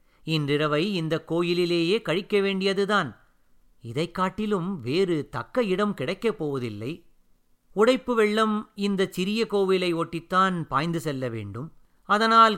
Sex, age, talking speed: male, 50-69, 105 wpm